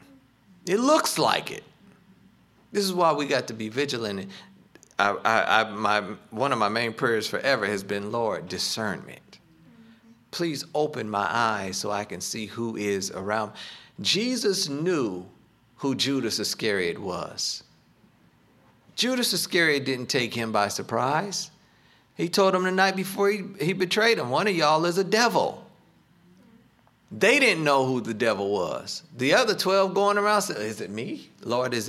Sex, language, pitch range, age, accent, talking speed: male, English, 125-195 Hz, 50-69, American, 150 wpm